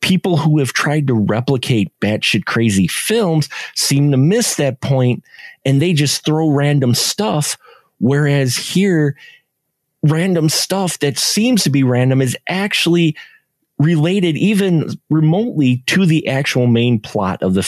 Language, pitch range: English, 115-150 Hz